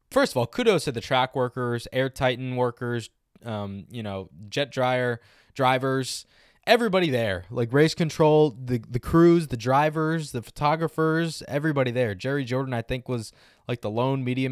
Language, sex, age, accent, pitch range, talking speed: English, male, 20-39, American, 110-140 Hz, 165 wpm